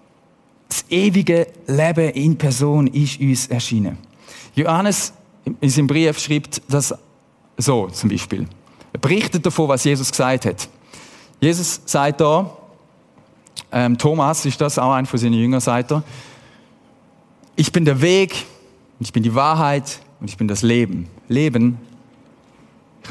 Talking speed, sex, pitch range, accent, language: 135 wpm, male, 130-185 Hz, German, German